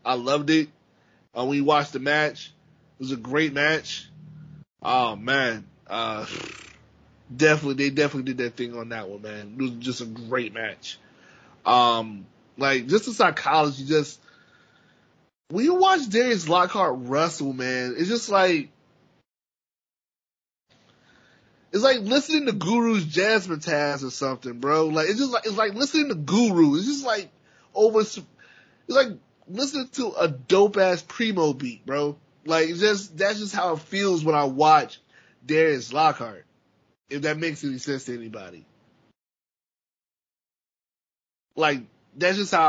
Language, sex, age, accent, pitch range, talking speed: English, male, 20-39, American, 140-185 Hz, 145 wpm